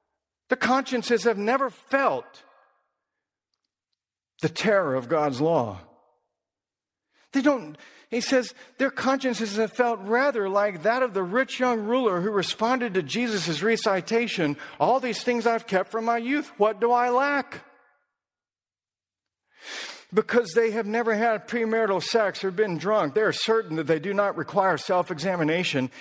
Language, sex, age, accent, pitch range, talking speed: English, male, 50-69, American, 160-230 Hz, 145 wpm